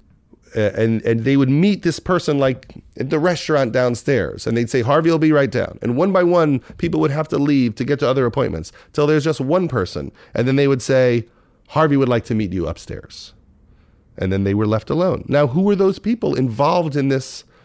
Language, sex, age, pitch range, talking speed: English, male, 40-59, 115-155 Hz, 220 wpm